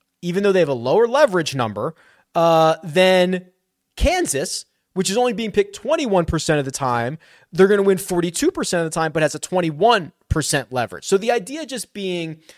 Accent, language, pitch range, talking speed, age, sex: American, English, 140-190 Hz, 180 wpm, 30-49, male